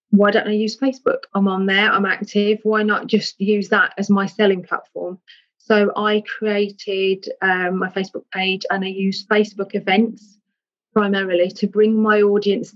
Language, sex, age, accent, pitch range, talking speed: English, female, 30-49, British, 190-215 Hz, 170 wpm